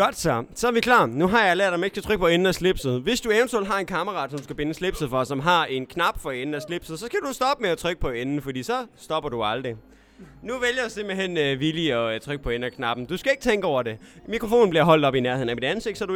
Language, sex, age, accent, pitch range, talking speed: Danish, male, 20-39, native, 155-235 Hz, 295 wpm